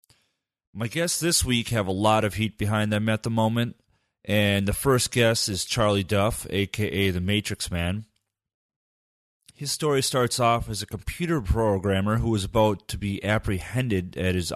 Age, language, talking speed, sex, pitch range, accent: 30-49, English, 170 wpm, male, 95-115 Hz, American